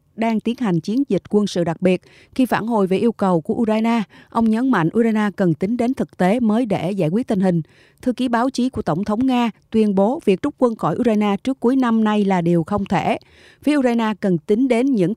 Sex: female